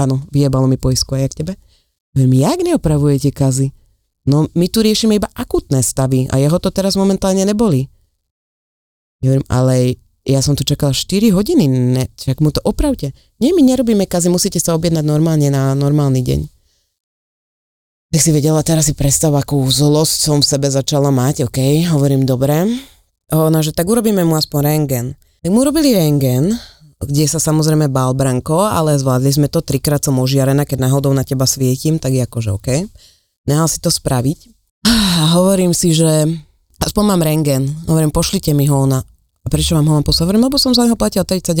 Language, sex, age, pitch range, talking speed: Slovak, female, 20-39, 130-170 Hz, 175 wpm